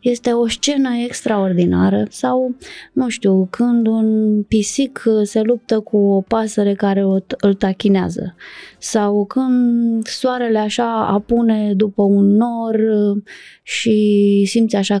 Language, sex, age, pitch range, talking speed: Romanian, female, 20-39, 200-235 Hz, 120 wpm